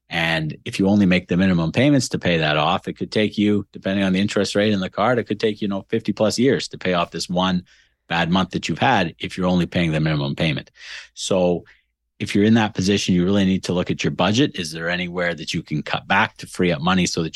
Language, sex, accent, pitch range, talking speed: English, male, American, 85-100 Hz, 265 wpm